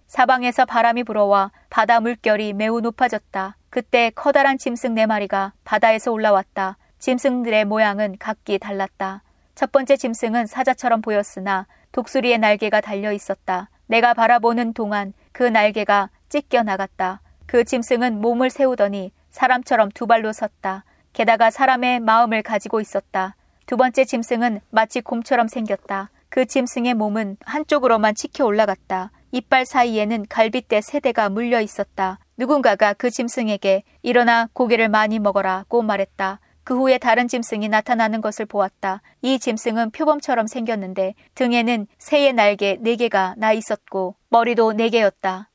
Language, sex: Korean, female